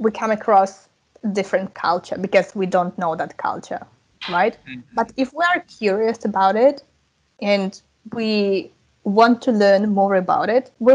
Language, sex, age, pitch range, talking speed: English, female, 20-39, 195-255 Hz, 155 wpm